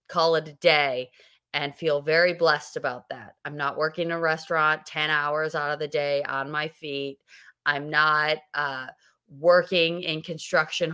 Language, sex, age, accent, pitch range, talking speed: English, female, 30-49, American, 145-175 Hz, 170 wpm